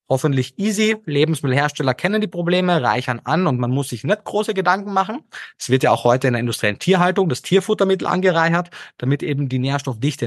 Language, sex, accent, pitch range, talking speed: German, male, German, 115-165 Hz, 185 wpm